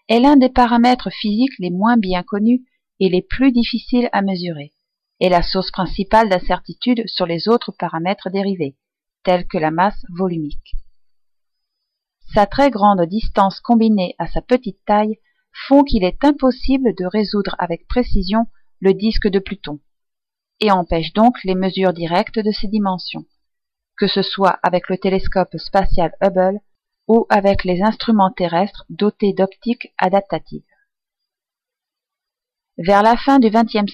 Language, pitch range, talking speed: French, 185-235 Hz, 145 wpm